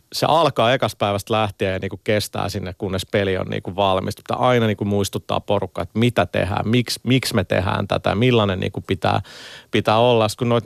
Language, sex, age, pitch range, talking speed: Finnish, male, 30-49, 100-120 Hz, 185 wpm